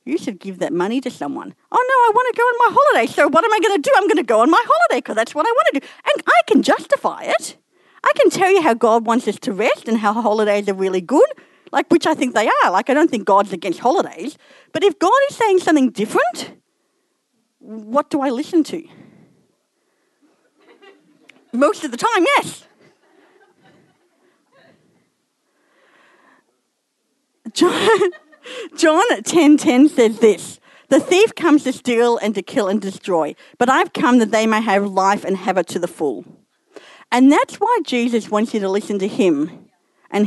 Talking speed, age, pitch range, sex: 190 wpm, 40-59, 215-345 Hz, female